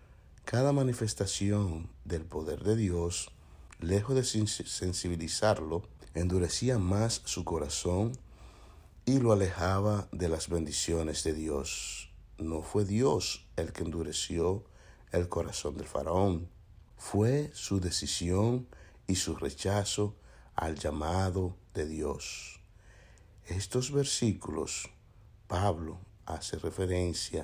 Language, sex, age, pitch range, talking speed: Spanish, male, 60-79, 85-105 Hz, 100 wpm